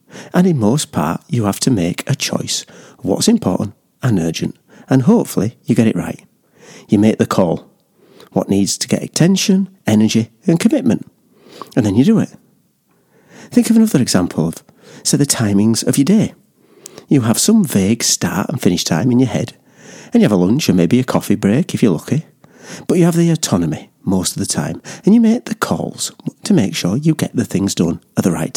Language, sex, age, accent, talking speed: English, male, 40-59, British, 205 wpm